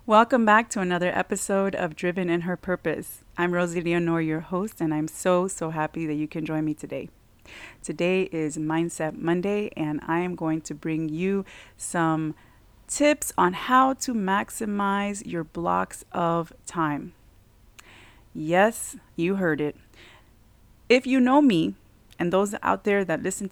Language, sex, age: English, female, 30-49